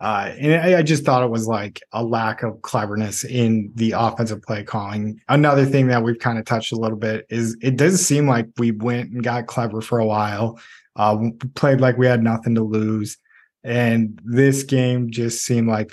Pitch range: 110-130 Hz